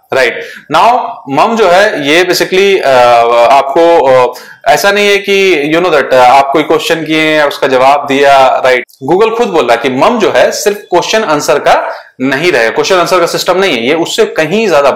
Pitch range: 135-185 Hz